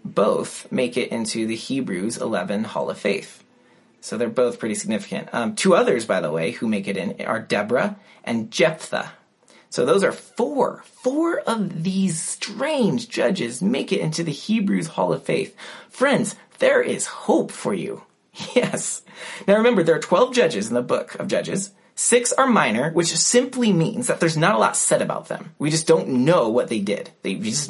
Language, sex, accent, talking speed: English, male, American, 190 wpm